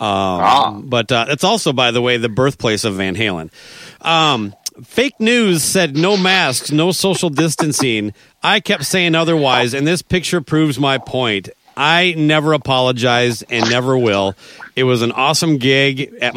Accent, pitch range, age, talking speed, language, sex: American, 120-165 Hz, 40-59, 160 wpm, English, male